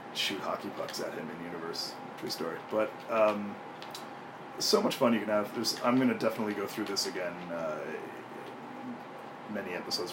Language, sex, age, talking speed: English, male, 30-49, 170 wpm